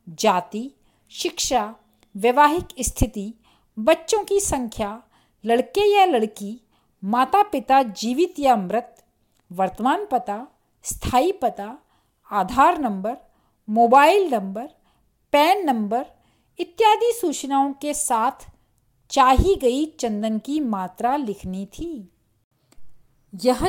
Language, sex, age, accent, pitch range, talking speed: Hindi, female, 50-69, native, 220-325 Hz, 95 wpm